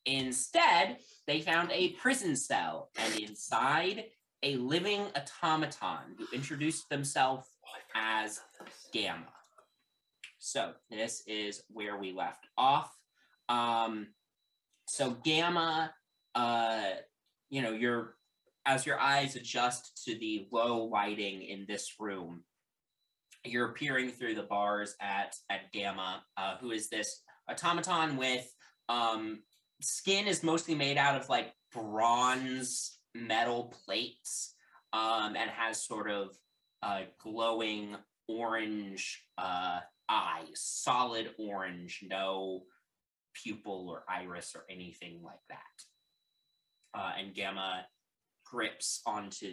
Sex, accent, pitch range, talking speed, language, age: male, American, 105-135 Hz, 110 wpm, English, 20-39